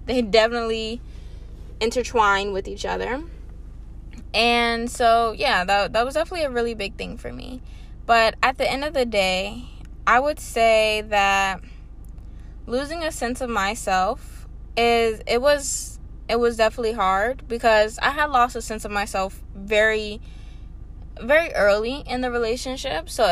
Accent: American